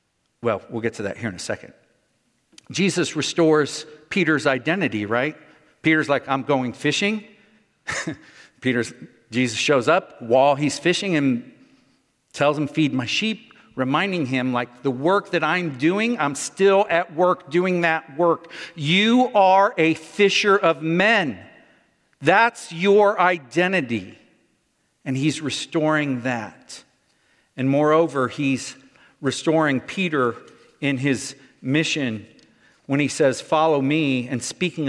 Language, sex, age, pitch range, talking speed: English, male, 50-69, 140-185 Hz, 130 wpm